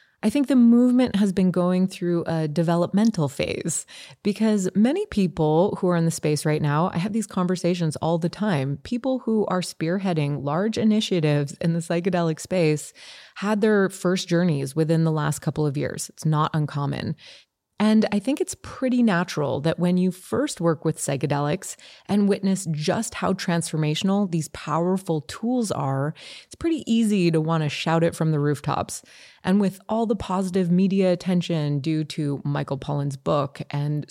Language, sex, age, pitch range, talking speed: English, female, 20-39, 155-200 Hz, 170 wpm